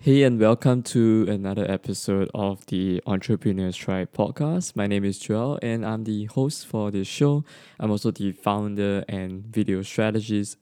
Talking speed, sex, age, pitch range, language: 165 wpm, male, 20-39, 95-115 Hz, English